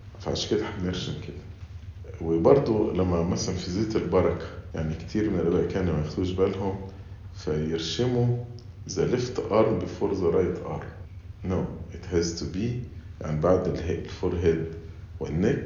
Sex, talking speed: male, 120 wpm